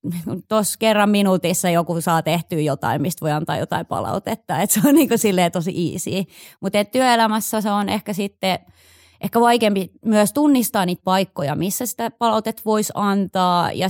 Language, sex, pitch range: Finnish, female, 165-210 Hz